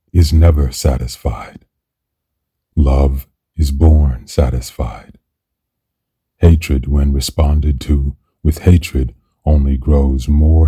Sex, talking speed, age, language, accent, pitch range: male, 90 wpm, 40-59, English, American, 70-80 Hz